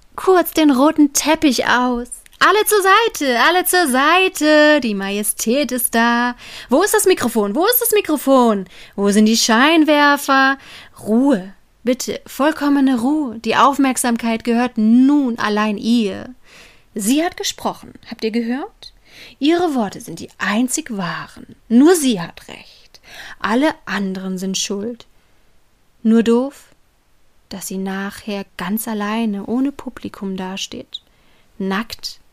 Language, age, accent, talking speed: German, 30-49, German, 125 wpm